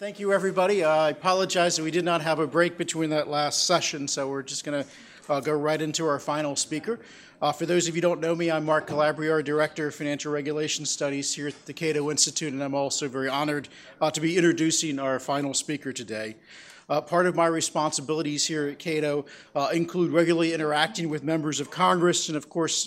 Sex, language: male, English